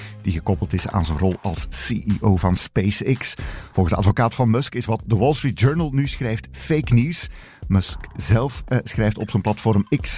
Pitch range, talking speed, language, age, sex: 100-130 Hz, 195 wpm, Dutch, 50-69, male